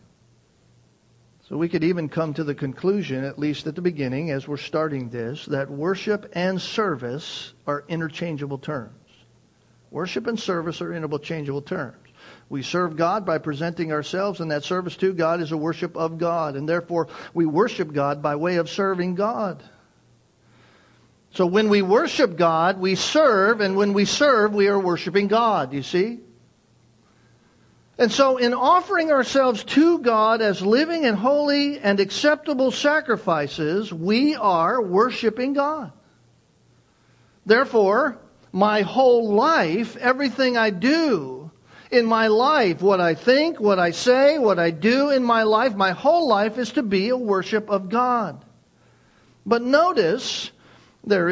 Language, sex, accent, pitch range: English, male, American, 160-240 Hz